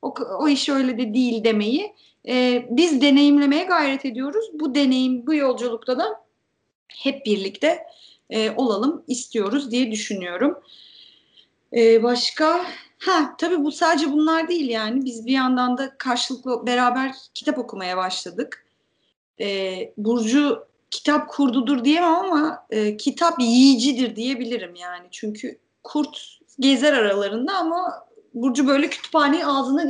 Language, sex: Turkish, female